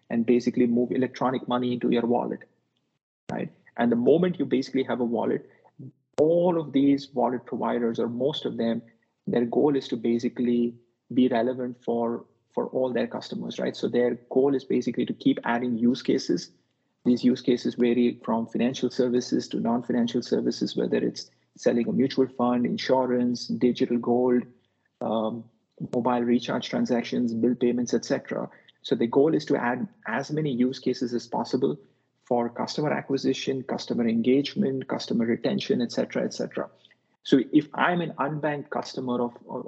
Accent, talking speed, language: Indian, 160 wpm, English